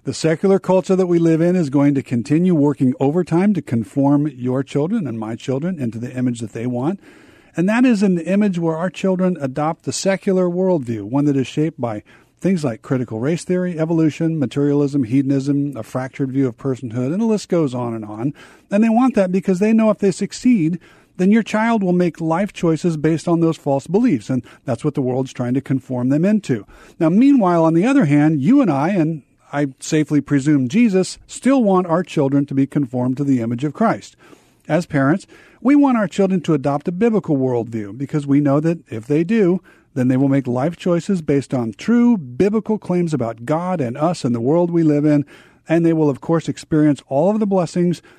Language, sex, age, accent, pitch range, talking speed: English, male, 50-69, American, 135-185 Hz, 210 wpm